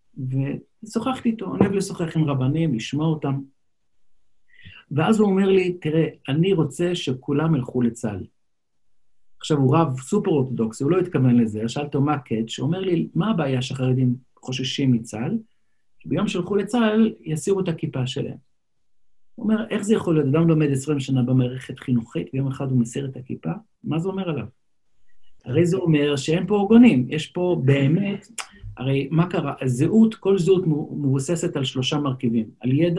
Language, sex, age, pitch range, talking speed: Hebrew, male, 50-69, 130-190 Hz, 165 wpm